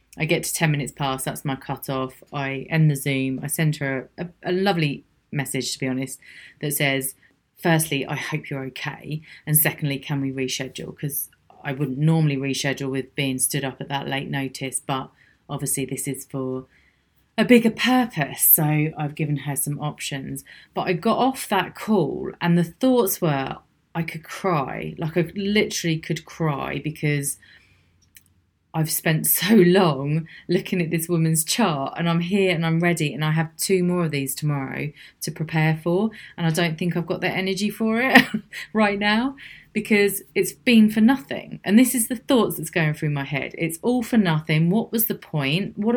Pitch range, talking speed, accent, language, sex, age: 140-185 Hz, 190 wpm, British, English, female, 30-49